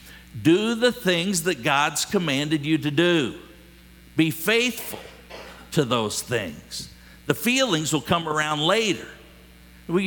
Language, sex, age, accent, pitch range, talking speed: English, male, 60-79, American, 130-200 Hz, 125 wpm